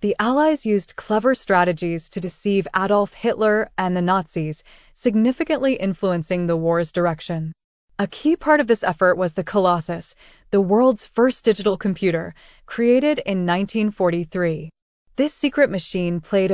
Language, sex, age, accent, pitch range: Japanese, female, 20-39, American, 175-225 Hz